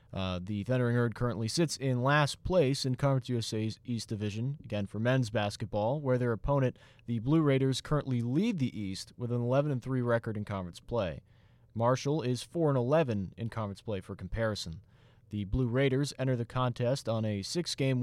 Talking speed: 175 wpm